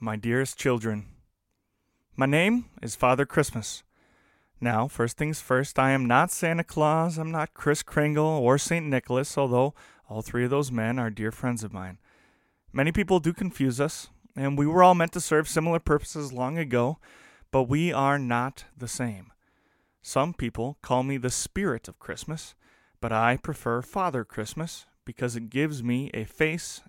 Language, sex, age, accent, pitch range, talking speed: English, male, 30-49, American, 115-150 Hz, 170 wpm